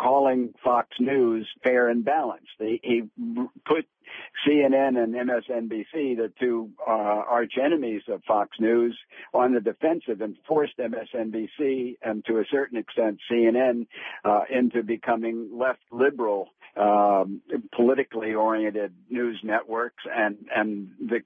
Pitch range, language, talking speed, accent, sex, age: 105-130 Hz, English, 130 wpm, American, male, 60-79